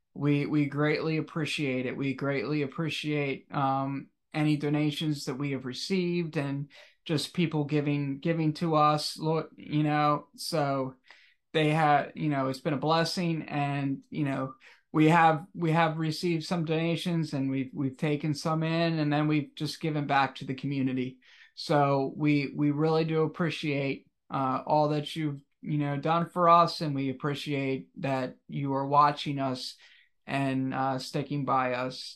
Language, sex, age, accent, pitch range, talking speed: English, male, 20-39, American, 140-160 Hz, 160 wpm